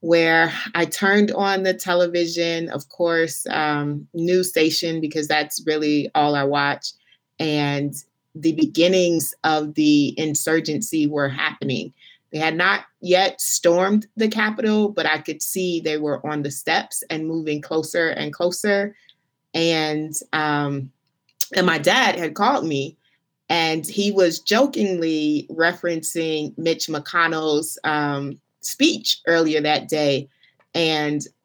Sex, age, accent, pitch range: female, 30-49, American, 150-180 Hz